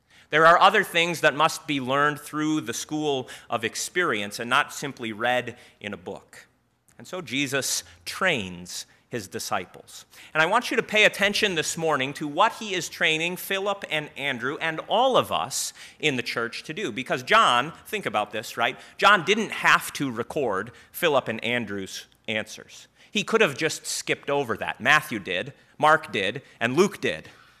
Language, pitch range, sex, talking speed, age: English, 130-180 Hz, male, 175 wpm, 30-49